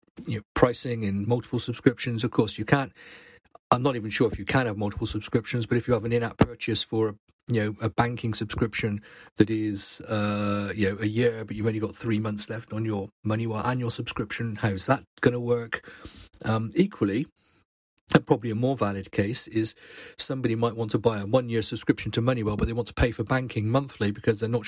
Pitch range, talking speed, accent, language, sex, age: 105-120 Hz, 205 wpm, British, English, male, 40-59